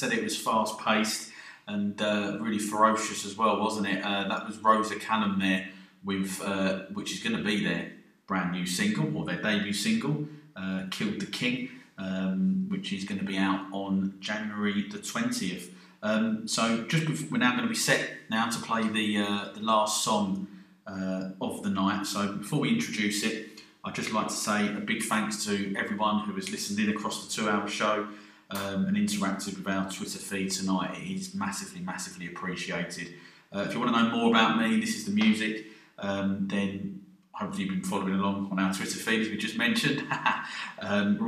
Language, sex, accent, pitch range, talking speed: English, male, British, 95-115 Hz, 195 wpm